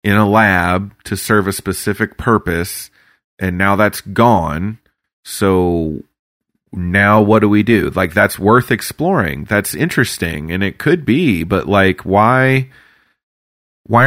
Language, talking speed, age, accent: English, 135 wpm, 30-49, American